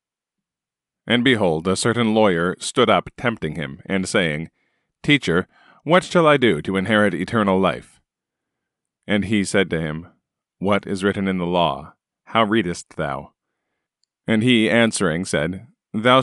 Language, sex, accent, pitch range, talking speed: English, male, American, 95-115 Hz, 145 wpm